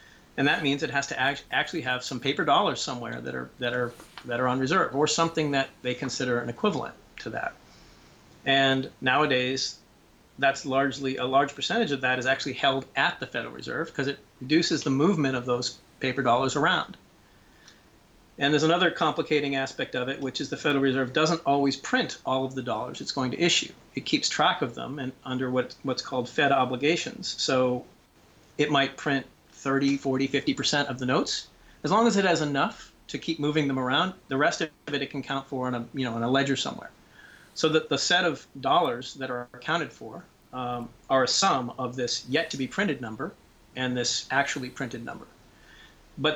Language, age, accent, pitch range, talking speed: English, 40-59, American, 130-150 Hz, 195 wpm